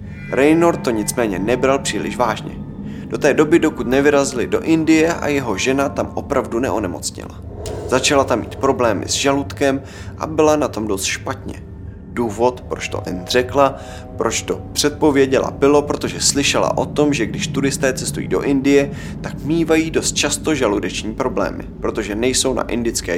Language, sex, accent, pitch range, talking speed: Czech, male, native, 100-140 Hz, 155 wpm